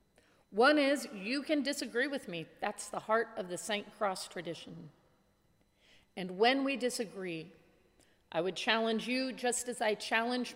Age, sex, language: 40-59, female, English